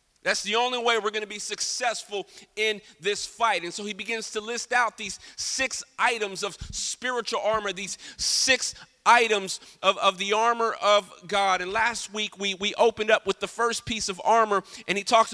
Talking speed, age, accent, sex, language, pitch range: 195 wpm, 40-59, American, male, English, 205-240 Hz